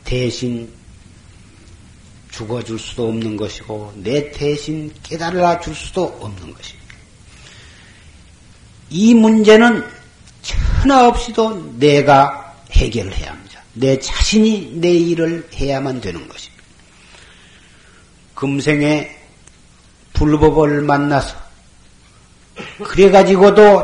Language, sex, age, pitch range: Korean, male, 50-69, 115-150 Hz